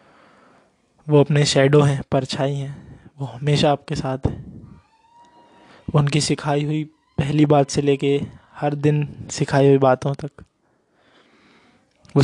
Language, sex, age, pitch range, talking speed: Hindi, male, 20-39, 140-150 Hz, 125 wpm